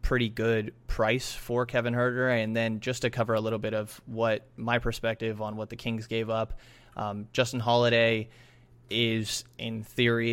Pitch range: 105-120 Hz